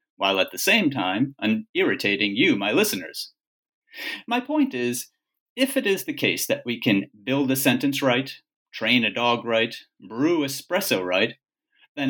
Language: English